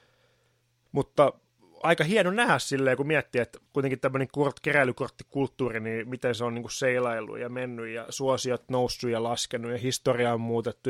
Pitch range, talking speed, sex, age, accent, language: 115-135 Hz, 160 wpm, male, 30-49, native, Finnish